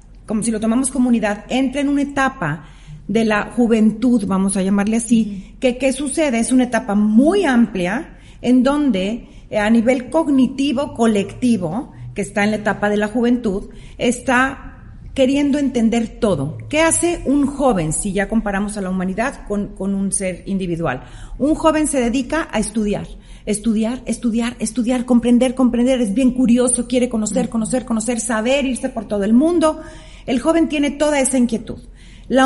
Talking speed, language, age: 165 wpm, Spanish, 40-59